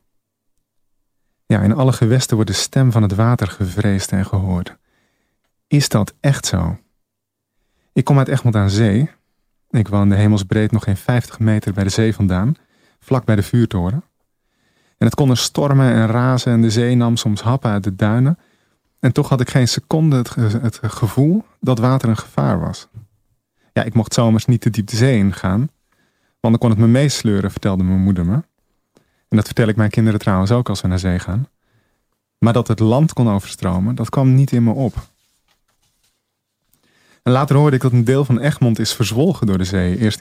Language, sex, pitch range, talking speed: Dutch, male, 105-125 Hz, 190 wpm